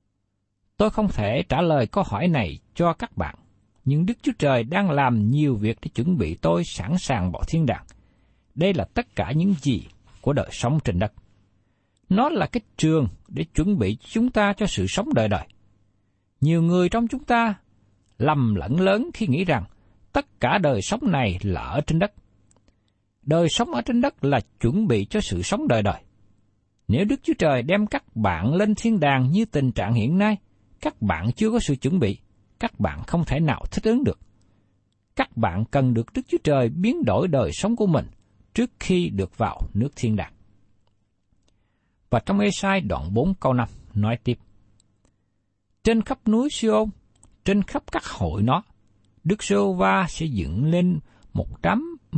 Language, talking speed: Vietnamese, 185 wpm